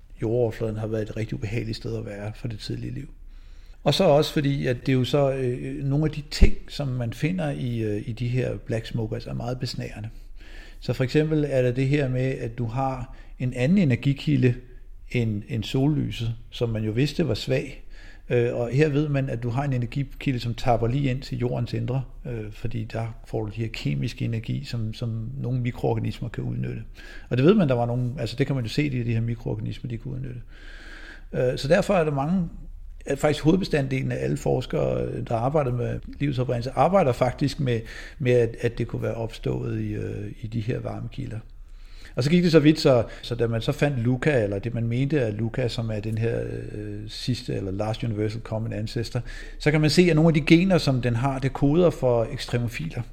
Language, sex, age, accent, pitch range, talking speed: Danish, male, 60-79, native, 115-140 Hz, 210 wpm